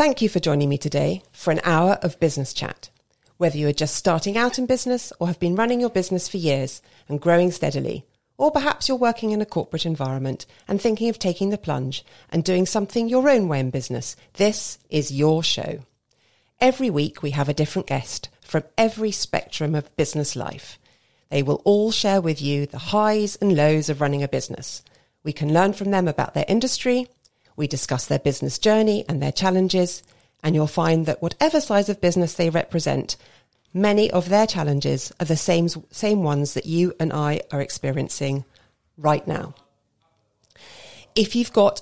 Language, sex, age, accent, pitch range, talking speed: English, female, 40-59, British, 145-205 Hz, 185 wpm